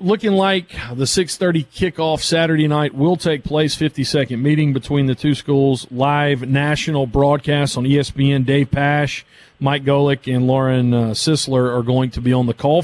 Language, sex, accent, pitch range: English, male, American, 135-165 Hz